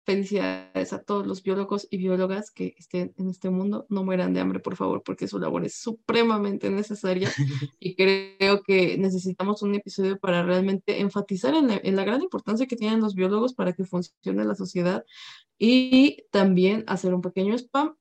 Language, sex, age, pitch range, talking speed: Spanish, female, 20-39, 180-215 Hz, 180 wpm